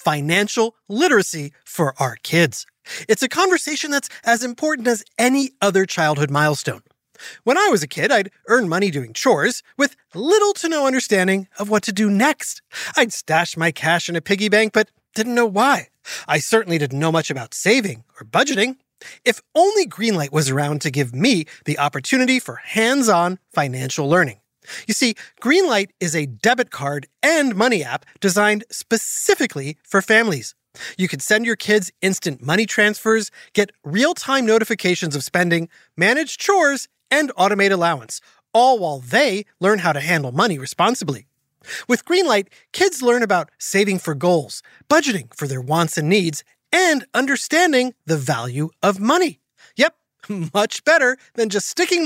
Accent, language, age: American, English, 30-49